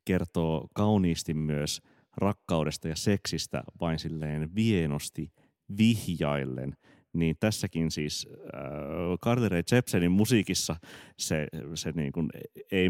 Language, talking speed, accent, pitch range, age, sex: Finnish, 105 wpm, native, 75-90 Hz, 30-49, male